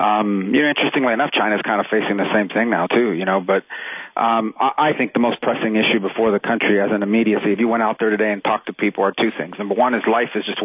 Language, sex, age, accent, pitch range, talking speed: English, male, 40-59, American, 105-115 Hz, 280 wpm